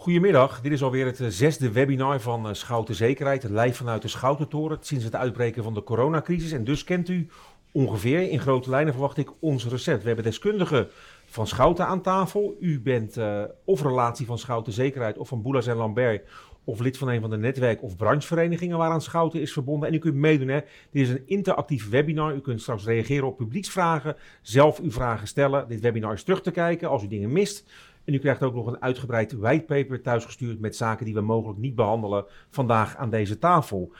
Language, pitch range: Dutch, 115-155 Hz